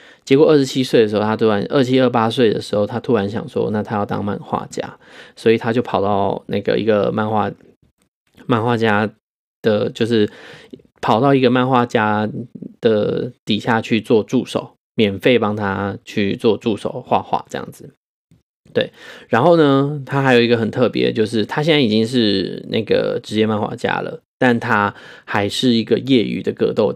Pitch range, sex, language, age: 105-130 Hz, male, Chinese, 20-39